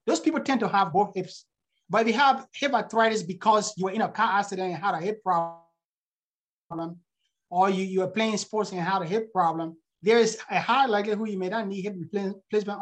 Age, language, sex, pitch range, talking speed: 30-49, English, male, 175-230 Hz, 215 wpm